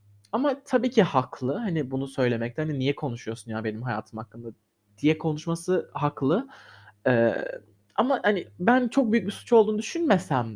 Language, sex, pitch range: Turkish, male, 125-175 Hz